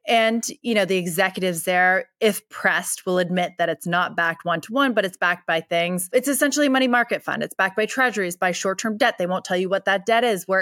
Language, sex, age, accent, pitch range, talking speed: English, female, 30-49, American, 180-230 Hz, 235 wpm